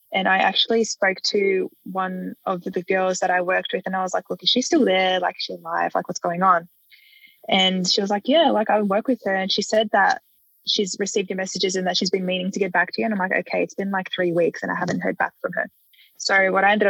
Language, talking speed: English, 275 wpm